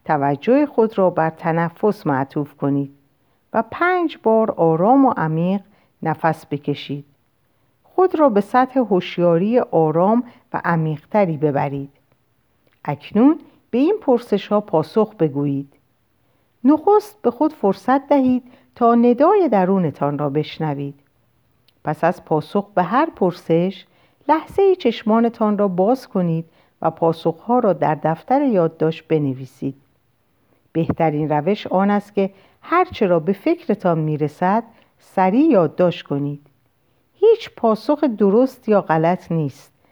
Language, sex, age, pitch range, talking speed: Persian, female, 50-69, 150-250 Hz, 115 wpm